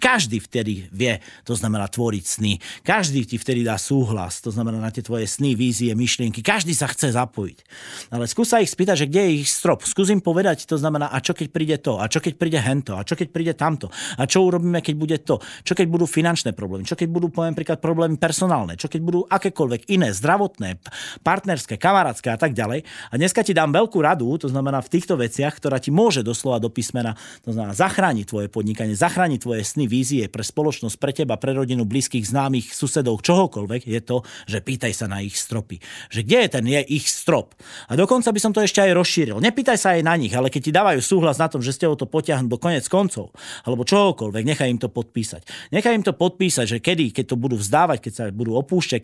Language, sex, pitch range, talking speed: Slovak, male, 120-170 Hz, 220 wpm